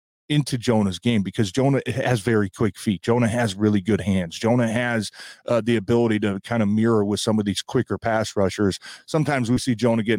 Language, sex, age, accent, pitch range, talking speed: English, male, 30-49, American, 105-125 Hz, 205 wpm